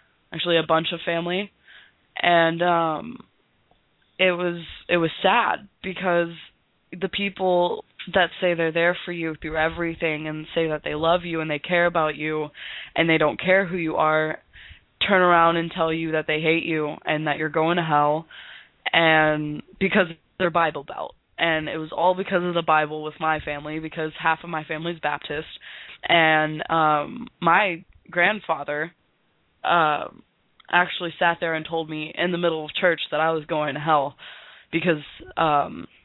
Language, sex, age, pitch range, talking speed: English, female, 20-39, 155-175 Hz, 170 wpm